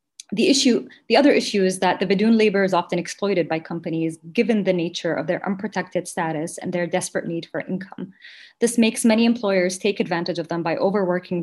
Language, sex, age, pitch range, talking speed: English, female, 20-39, 170-200 Hz, 200 wpm